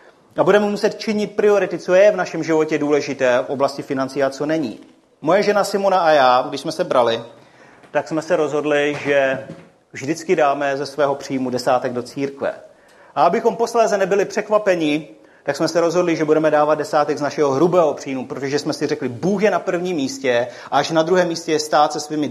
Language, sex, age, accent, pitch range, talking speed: Czech, male, 40-59, native, 135-165 Hz, 200 wpm